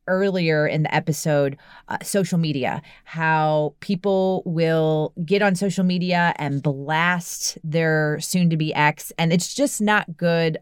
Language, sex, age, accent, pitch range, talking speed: English, female, 30-49, American, 150-185 Hz, 145 wpm